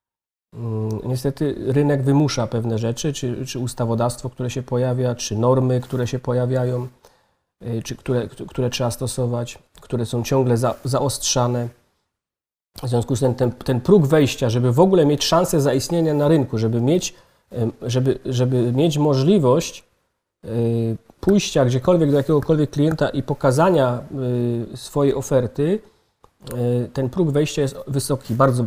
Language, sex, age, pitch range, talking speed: Polish, male, 40-59, 115-135 Hz, 130 wpm